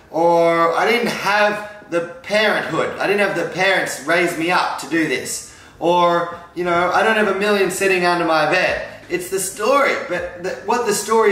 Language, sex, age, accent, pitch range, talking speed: English, male, 20-39, Australian, 175-210 Hz, 195 wpm